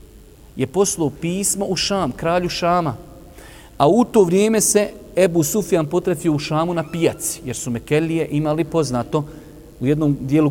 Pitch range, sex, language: 130-180 Hz, male, English